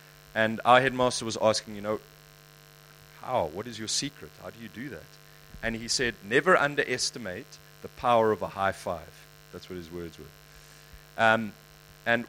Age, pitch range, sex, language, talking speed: 40-59, 100-150 Hz, male, English, 170 wpm